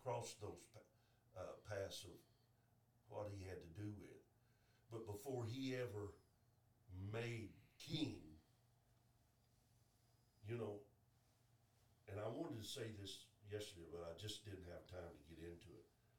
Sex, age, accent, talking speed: male, 60-79, American, 135 wpm